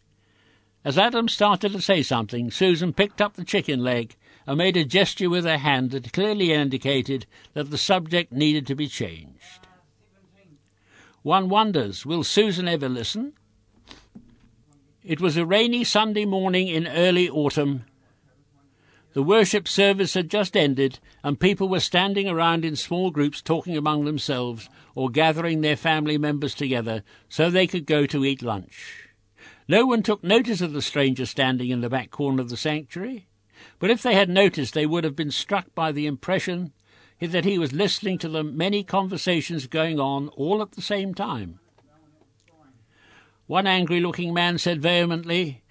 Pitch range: 135-185 Hz